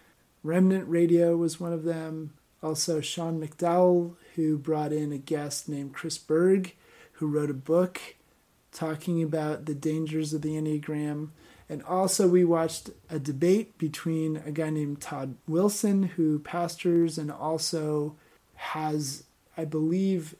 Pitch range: 145-170 Hz